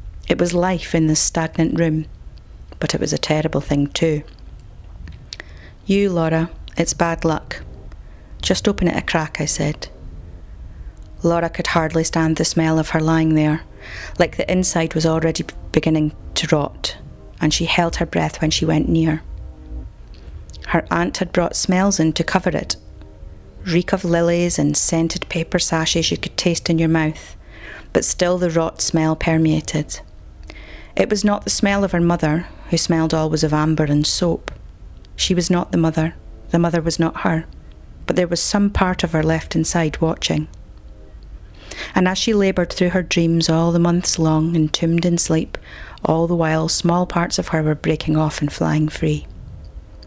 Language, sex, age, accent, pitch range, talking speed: English, female, 30-49, British, 120-170 Hz, 170 wpm